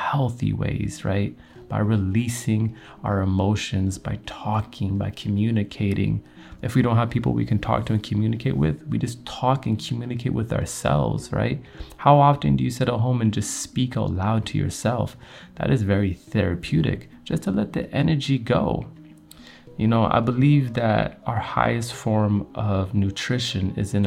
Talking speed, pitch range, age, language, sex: 165 wpm, 100-125 Hz, 30-49, English, male